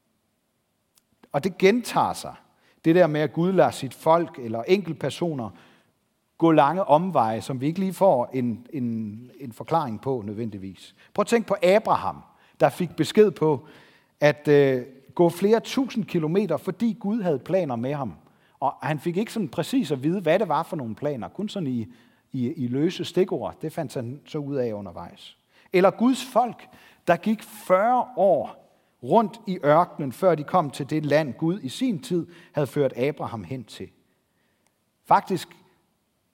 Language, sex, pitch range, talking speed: Danish, male, 130-185 Hz, 165 wpm